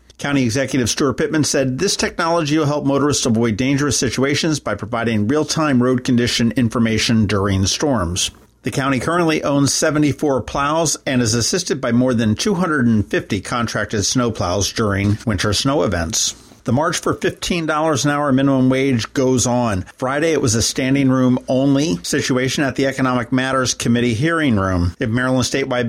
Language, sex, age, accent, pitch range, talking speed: English, male, 50-69, American, 110-135 Hz, 160 wpm